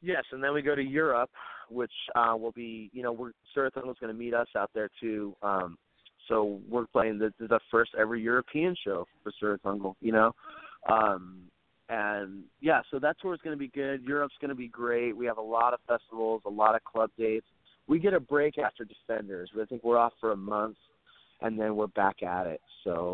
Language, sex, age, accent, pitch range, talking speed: English, male, 30-49, American, 105-135 Hz, 205 wpm